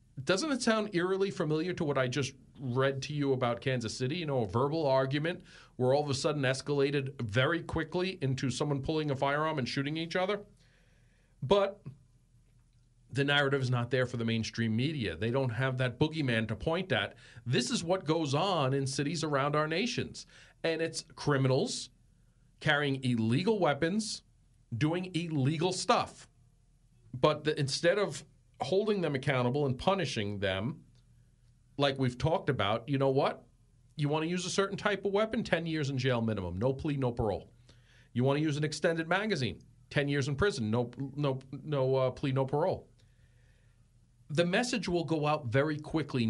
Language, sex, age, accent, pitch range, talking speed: English, male, 40-59, American, 125-160 Hz, 170 wpm